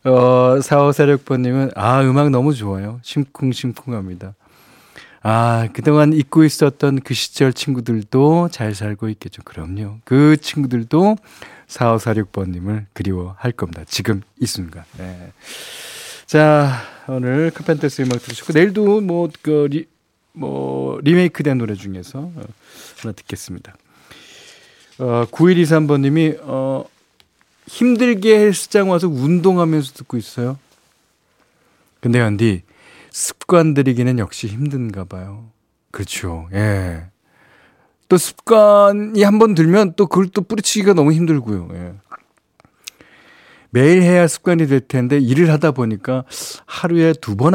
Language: Korean